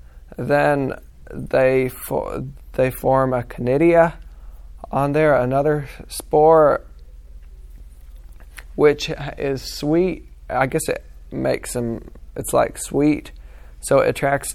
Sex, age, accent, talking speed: male, 20-39, American, 105 wpm